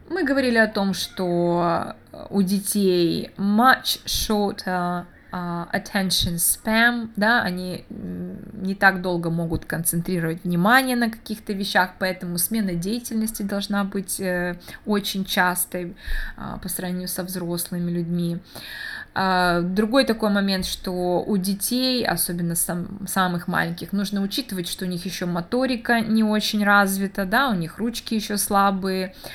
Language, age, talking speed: Russian, 20-39, 120 wpm